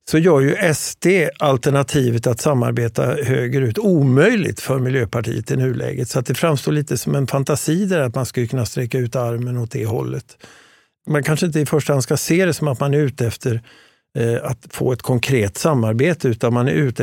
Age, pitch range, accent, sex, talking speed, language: 50-69, 120-150 Hz, native, male, 195 wpm, Swedish